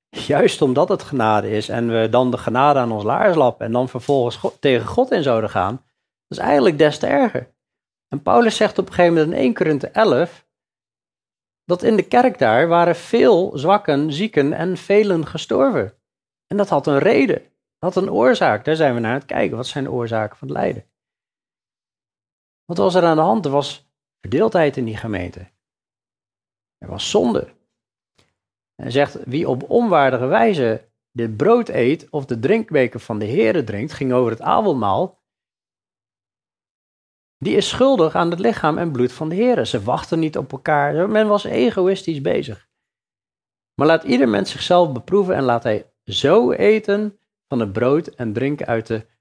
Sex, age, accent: male, 40-59, Dutch